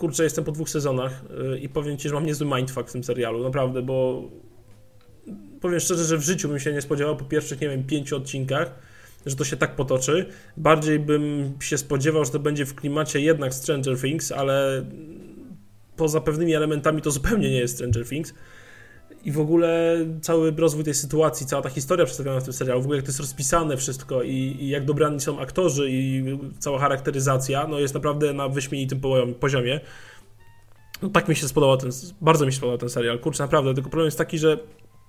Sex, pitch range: male, 130-155 Hz